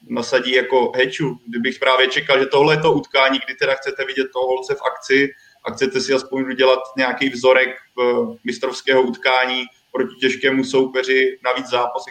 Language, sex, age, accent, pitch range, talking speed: Czech, male, 20-39, native, 125-140 Hz, 165 wpm